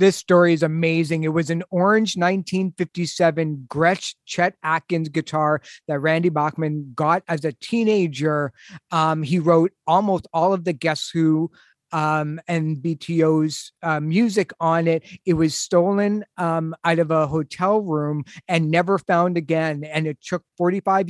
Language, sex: English, male